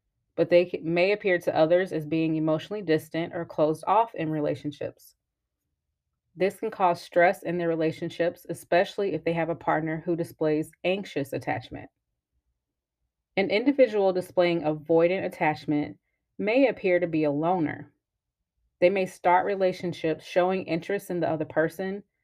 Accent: American